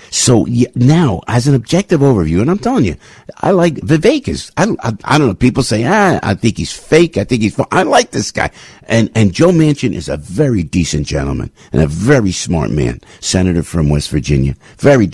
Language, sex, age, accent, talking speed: English, male, 50-69, American, 205 wpm